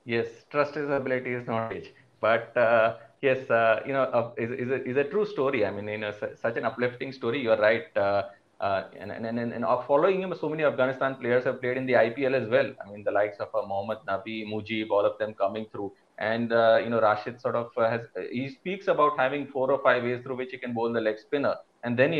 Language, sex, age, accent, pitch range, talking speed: English, male, 30-49, Indian, 115-140 Hz, 245 wpm